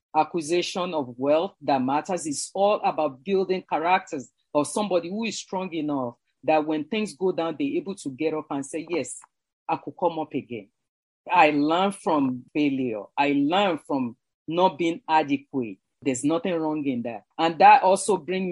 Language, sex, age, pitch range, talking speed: English, female, 40-59, 155-200 Hz, 170 wpm